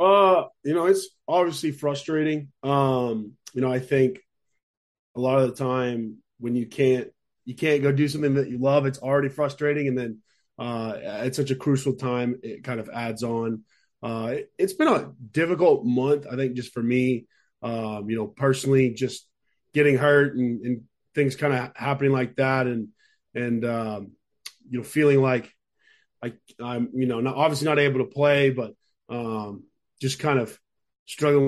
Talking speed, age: 175 wpm, 20-39